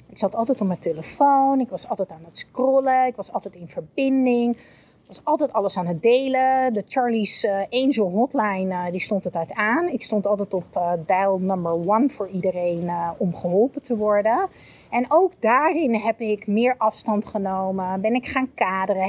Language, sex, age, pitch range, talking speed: Dutch, female, 30-49, 195-250 Hz, 190 wpm